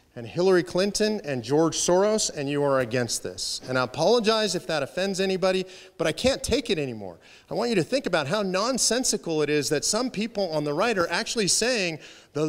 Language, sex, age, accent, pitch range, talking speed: English, male, 40-59, American, 145-195 Hz, 210 wpm